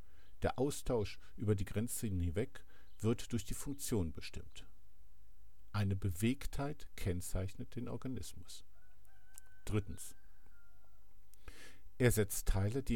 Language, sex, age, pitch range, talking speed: German, male, 50-69, 95-115 Hz, 95 wpm